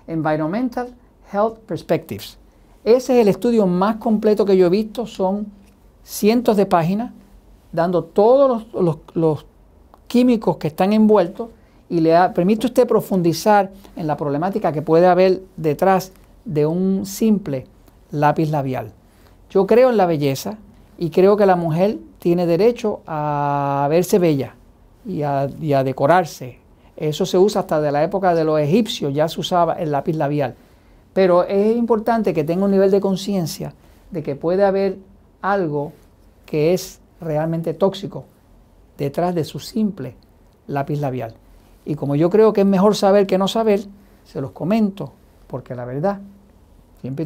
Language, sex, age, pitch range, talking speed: Spanish, male, 50-69, 145-200 Hz, 150 wpm